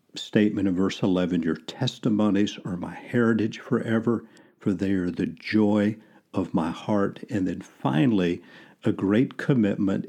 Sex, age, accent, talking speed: male, 50-69, American, 145 wpm